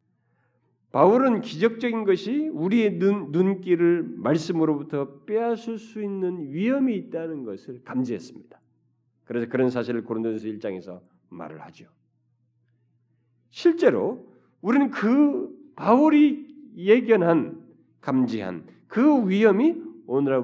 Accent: native